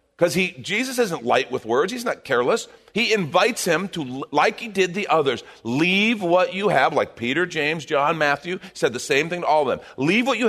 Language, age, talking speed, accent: English, 50-69, 215 wpm, American